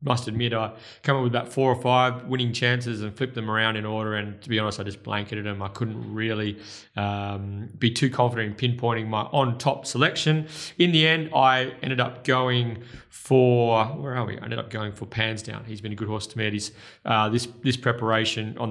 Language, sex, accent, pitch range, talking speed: English, male, Australian, 110-125 Hz, 220 wpm